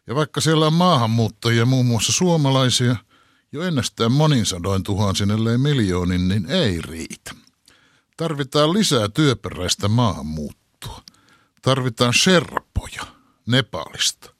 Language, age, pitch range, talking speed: Finnish, 60-79, 100-140 Hz, 105 wpm